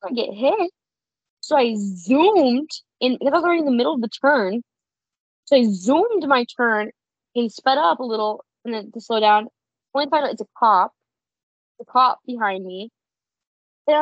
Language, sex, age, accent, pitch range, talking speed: English, female, 20-39, American, 220-285 Hz, 185 wpm